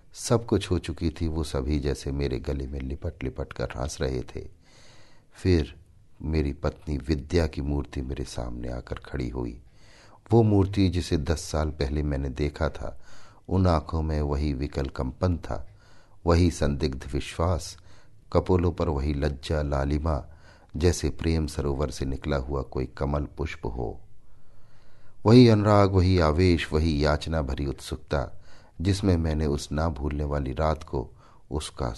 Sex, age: male, 50-69